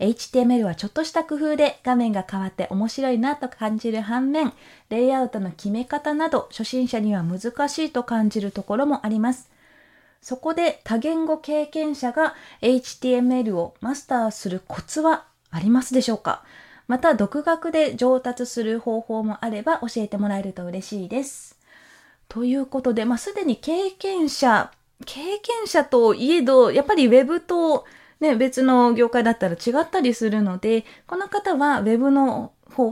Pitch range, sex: 220-300 Hz, female